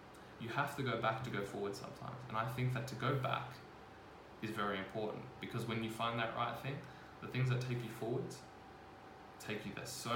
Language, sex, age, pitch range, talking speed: English, male, 20-39, 110-130 Hz, 215 wpm